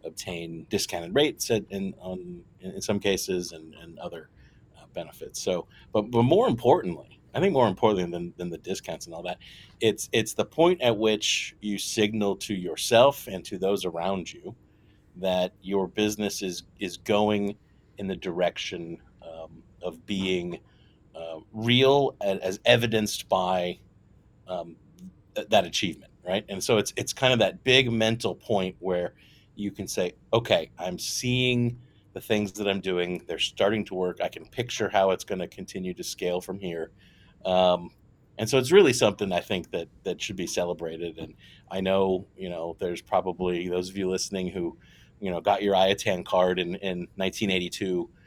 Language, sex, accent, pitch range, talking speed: English, male, American, 90-105 Hz, 170 wpm